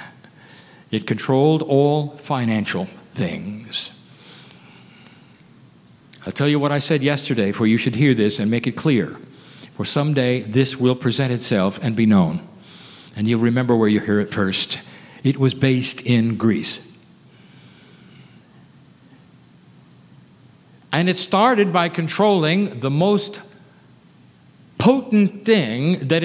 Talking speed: 120 wpm